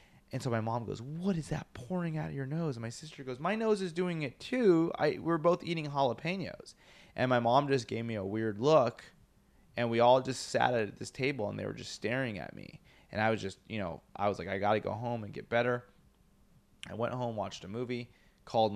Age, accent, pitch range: 20-39, American, 100-130 Hz